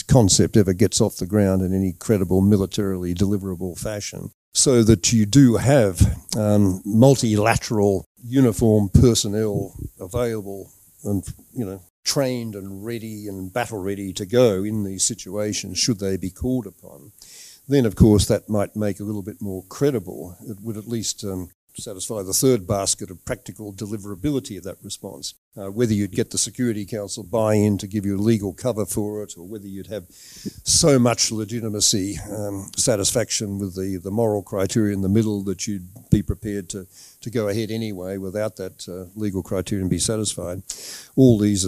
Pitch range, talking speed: 95-115 Hz, 170 wpm